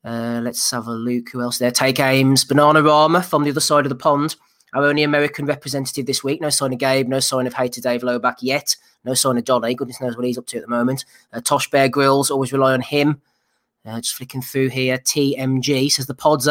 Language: English